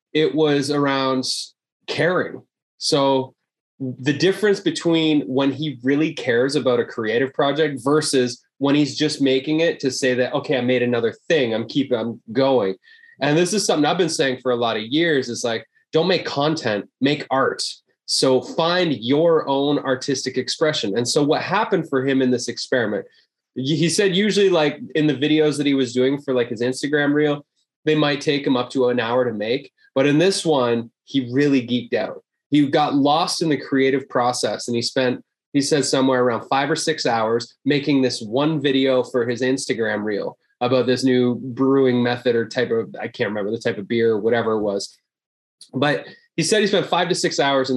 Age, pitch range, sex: 20-39, 125-155 Hz, male